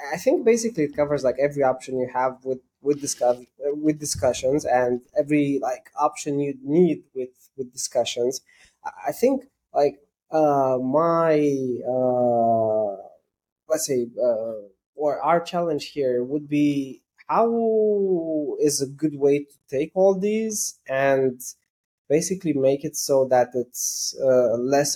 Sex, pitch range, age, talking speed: male, 125-155 Hz, 20-39, 140 wpm